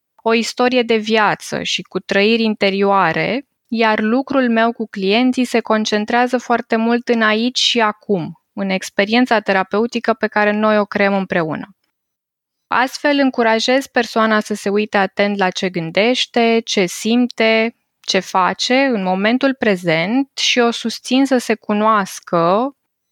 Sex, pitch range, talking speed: female, 200-245 Hz, 140 wpm